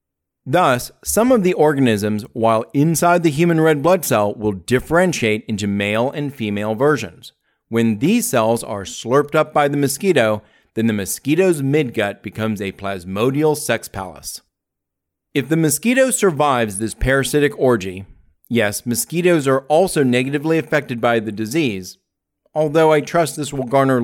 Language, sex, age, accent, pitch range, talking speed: English, male, 30-49, American, 110-155 Hz, 145 wpm